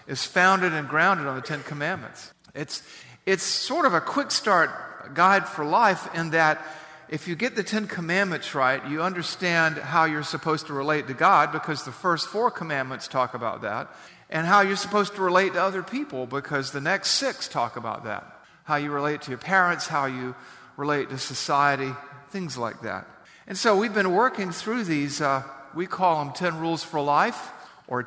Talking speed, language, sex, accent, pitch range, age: 190 wpm, English, male, American, 145-190 Hz, 50-69